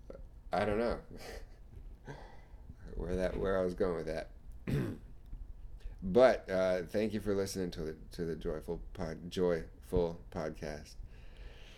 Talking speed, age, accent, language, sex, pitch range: 125 wpm, 30-49, American, English, male, 70-90 Hz